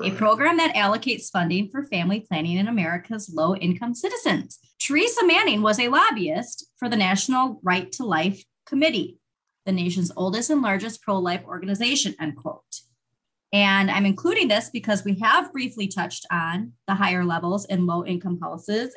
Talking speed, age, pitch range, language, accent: 155 wpm, 30-49, 180-230 Hz, English, American